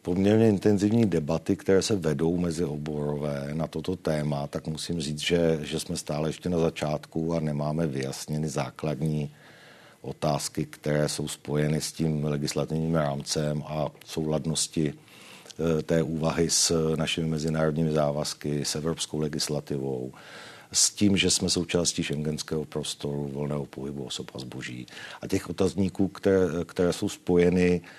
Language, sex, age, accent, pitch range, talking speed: Czech, male, 50-69, native, 75-85 Hz, 135 wpm